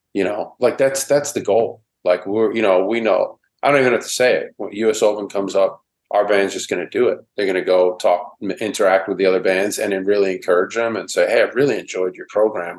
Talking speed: 260 wpm